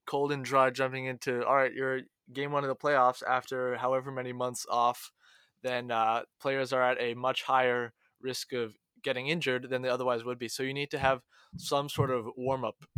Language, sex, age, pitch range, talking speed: English, male, 20-39, 125-145 Hz, 205 wpm